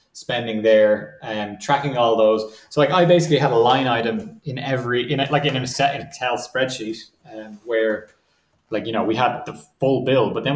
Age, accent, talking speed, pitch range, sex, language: 20-39, Irish, 215 wpm, 110-140 Hz, male, English